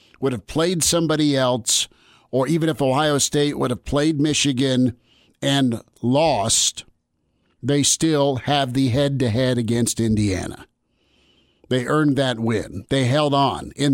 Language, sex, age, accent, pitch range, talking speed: English, male, 50-69, American, 120-145 Hz, 135 wpm